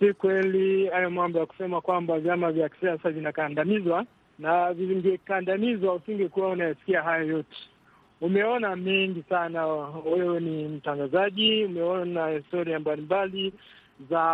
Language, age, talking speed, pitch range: Swahili, 50-69, 125 wpm, 160-195 Hz